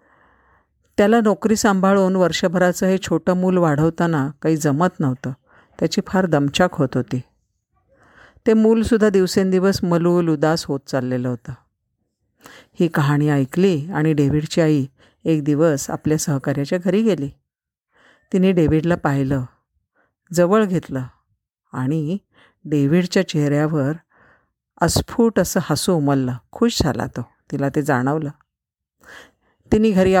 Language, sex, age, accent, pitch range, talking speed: Marathi, female, 50-69, native, 145-185 Hz, 110 wpm